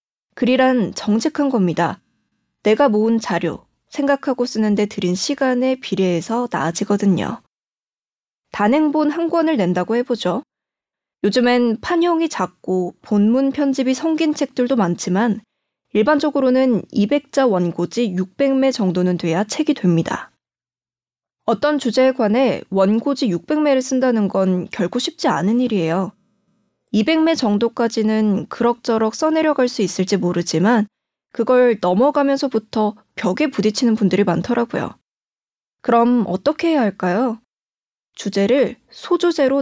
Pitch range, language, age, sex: 195-275 Hz, Korean, 20-39, female